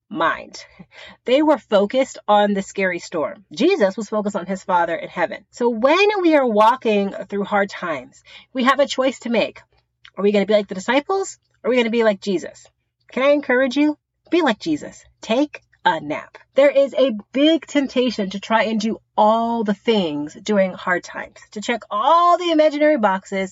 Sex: female